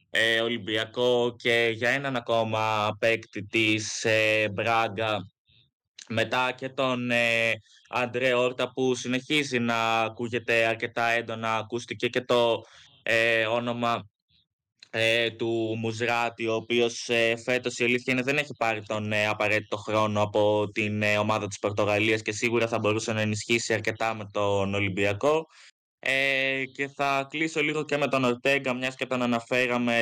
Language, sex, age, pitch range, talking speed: Greek, male, 20-39, 115-125 Hz, 150 wpm